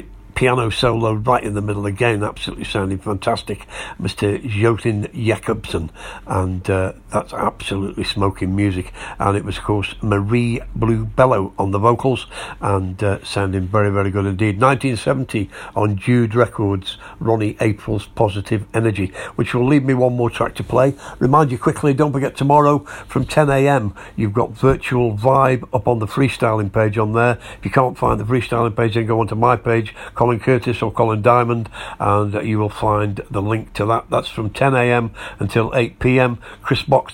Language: English